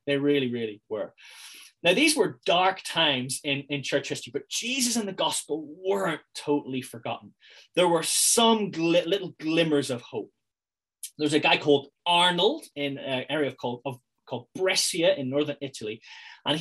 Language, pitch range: English, 140-220 Hz